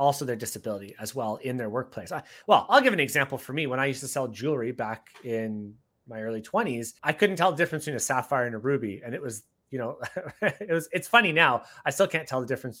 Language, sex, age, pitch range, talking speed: English, male, 30-49, 115-150 Hz, 255 wpm